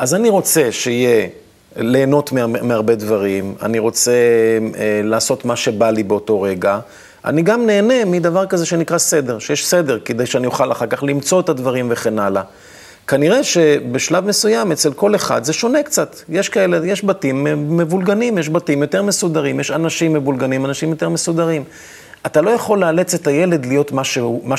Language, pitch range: Hebrew, 120-170 Hz